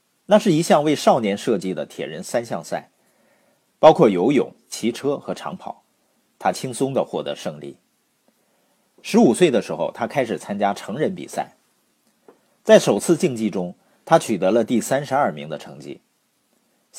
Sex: male